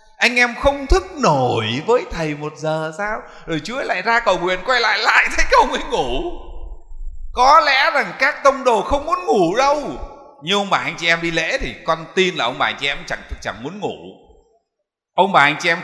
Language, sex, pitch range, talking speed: Vietnamese, male, 145-225 Hz, 225 wpm